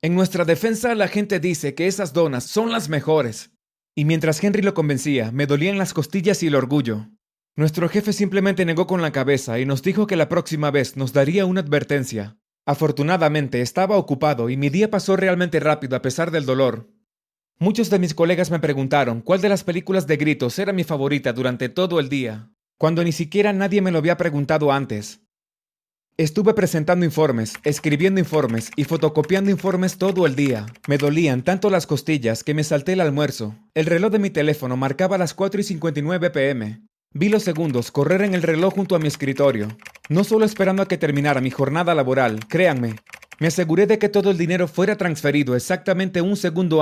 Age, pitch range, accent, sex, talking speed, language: 30-49, 140-185 Hz, Mexican, male, 190 wpm, Spanish